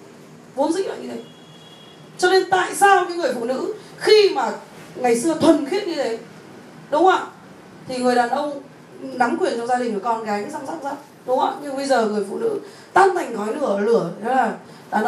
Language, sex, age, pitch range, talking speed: Vietnamese, female, 20-39, 210-310 Hz, 225 wpm